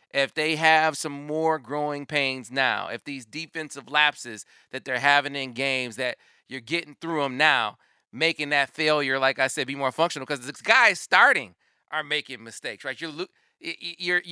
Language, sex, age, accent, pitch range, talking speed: English, male, 30-49, American, 140-185 Hz, 175 wpm